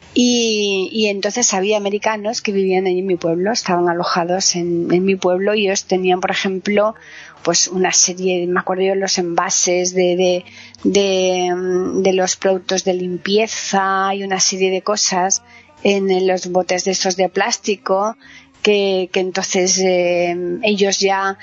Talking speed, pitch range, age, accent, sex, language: 155 wpm, 180-205 Hz, 30-49, Spanish, female, Spanish